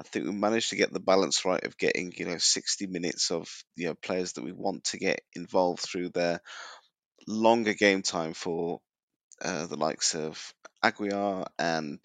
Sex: male